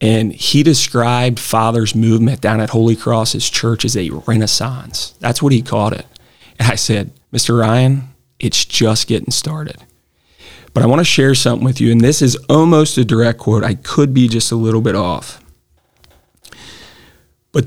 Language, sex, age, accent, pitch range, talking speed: English, male, 40-59, American, 115-135 Hz, 175 wpm